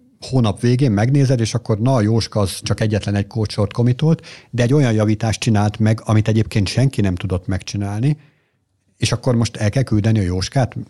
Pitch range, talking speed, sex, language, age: 100-125 Hz, 185 wpm, male, Hungarian, 60-79